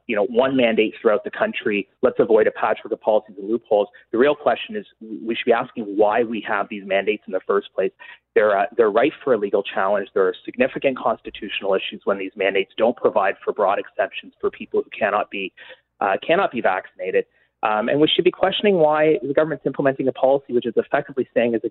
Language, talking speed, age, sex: English, 220 wpm, 30-49, male